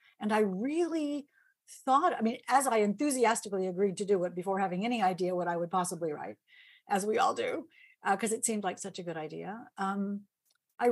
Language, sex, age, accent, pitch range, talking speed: English, female, 50-69, American, 190-255 Hz, 205 wpm